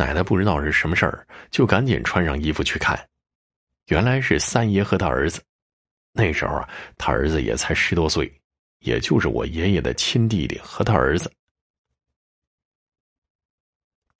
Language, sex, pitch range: Chinese, male, 75-110 Hz